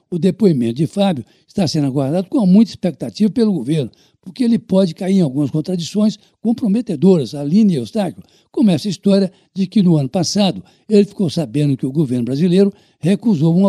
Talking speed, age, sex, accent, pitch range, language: 160 wpm, 60-79, male, Brazilian, 160-200 Hz, Portuguese